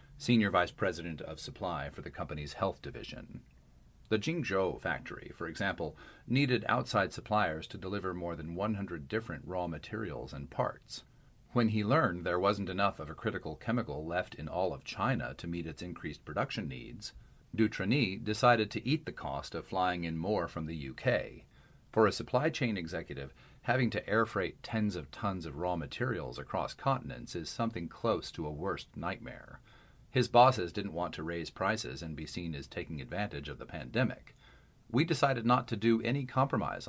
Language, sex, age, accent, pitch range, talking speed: English, male, 40-59, American, 80-120 Hz, 175 wpm